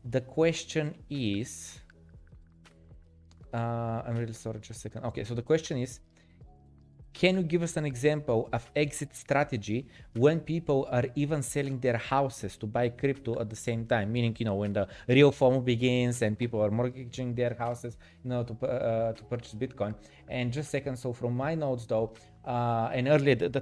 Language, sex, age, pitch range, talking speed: Bulgarian, male, 20-39, 115-145 Hz, 180 wpm